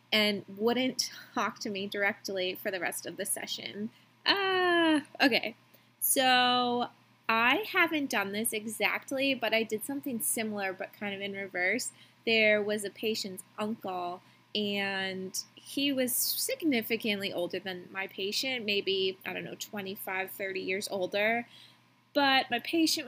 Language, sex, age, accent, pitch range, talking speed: English, female, 20-39, American, 205-260 Hz, 140 wpm